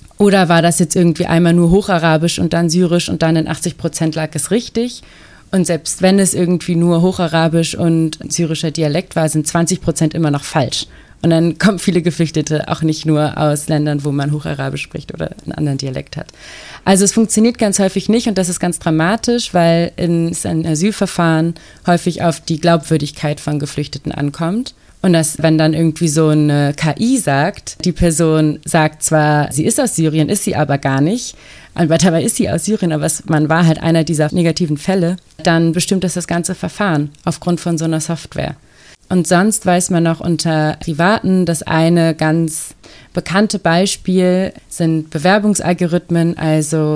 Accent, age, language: German, 30-49, German